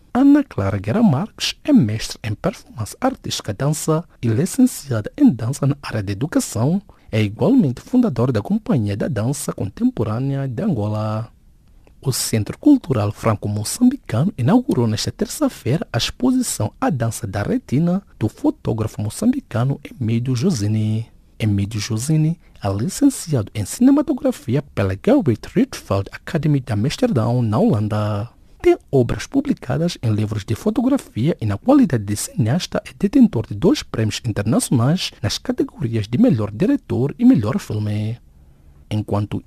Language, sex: English, male